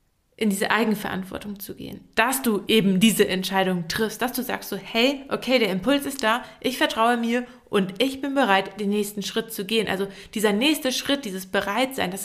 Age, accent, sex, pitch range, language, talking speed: 20-39, German, female, 205-250 Hz, German, 195 wpm